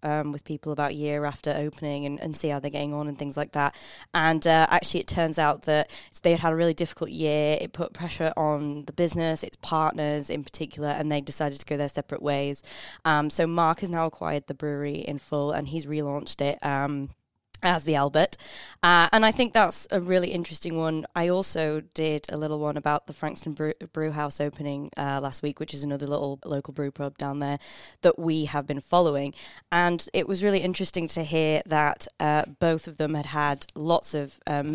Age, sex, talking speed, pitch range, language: 20-39, female, 215 wpm, 145-160 Hz, English